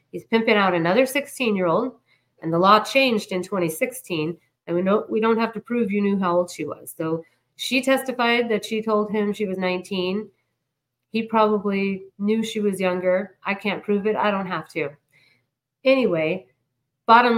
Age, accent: 40-59, American